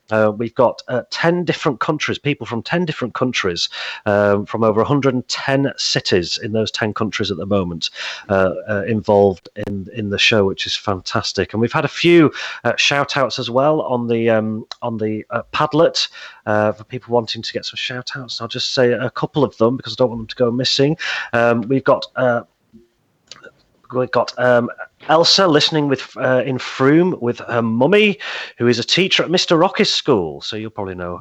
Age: 30-49